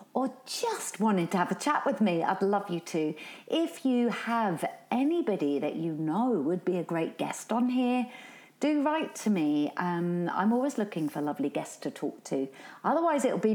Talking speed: 195 wpm